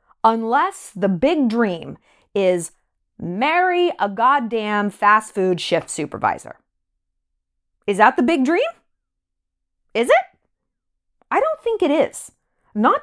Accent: American